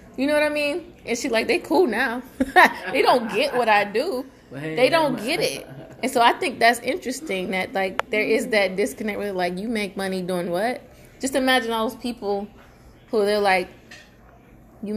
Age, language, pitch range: 20-39, English, 185-245 Hz